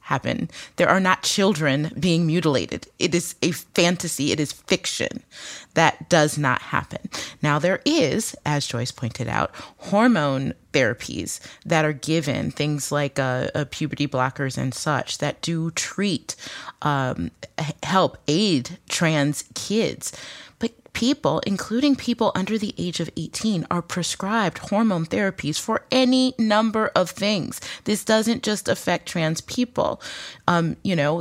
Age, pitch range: 30-49, 155-210 Hz